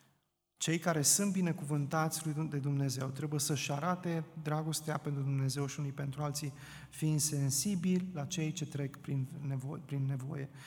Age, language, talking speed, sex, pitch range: 30-49, Romanian, 135 wpm, male, 140-180 Hz